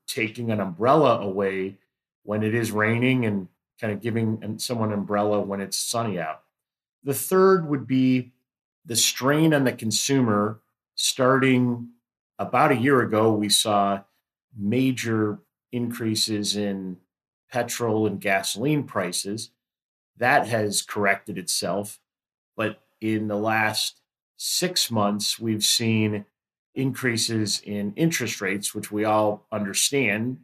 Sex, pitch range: male, 105-120 Hz